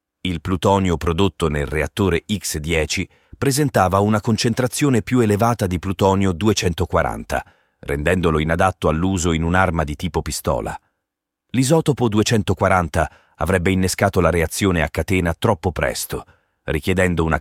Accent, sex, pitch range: native, male, 85-110 Hz